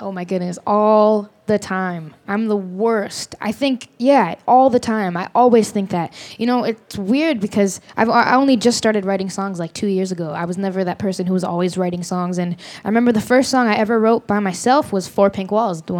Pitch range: 200-245 Hz